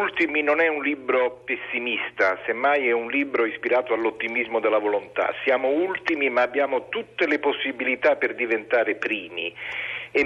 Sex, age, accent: male, 40-59, native